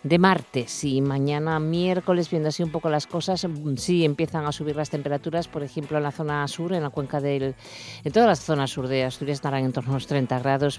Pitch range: 140-170 Hz